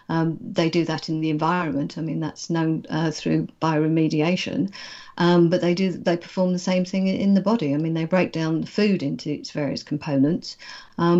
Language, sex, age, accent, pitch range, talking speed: English, female, 50-69, British, 160-180 Hz, 205 wpm